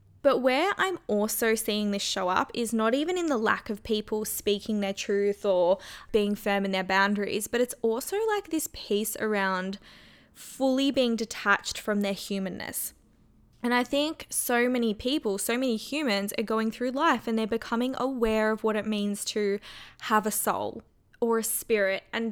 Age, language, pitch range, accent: 20-39, English, 205-235 Hz, Australian